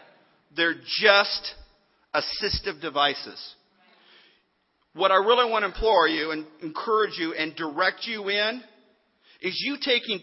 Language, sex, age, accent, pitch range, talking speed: English, male, 50-69, American, 210-270 Hz, 125 wpm